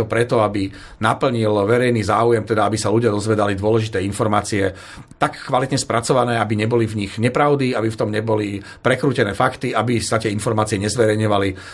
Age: 40-59